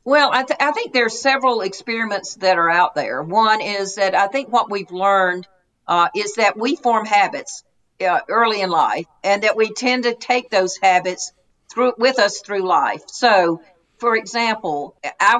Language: English